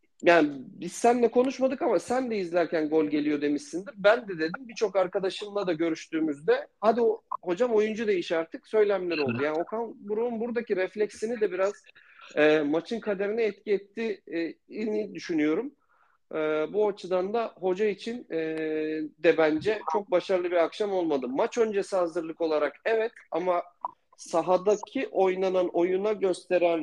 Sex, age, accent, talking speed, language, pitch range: male, 50-69, native, 140 wpm, Turkish, 150-205 Hz